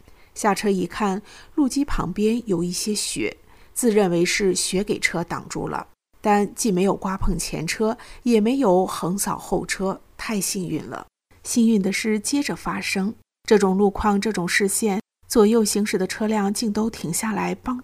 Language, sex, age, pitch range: Chinese, female, 50-69, 180-220 Hz